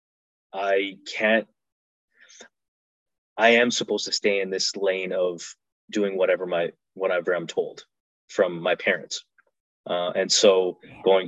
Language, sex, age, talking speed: English, male, 20-39, 130 wpm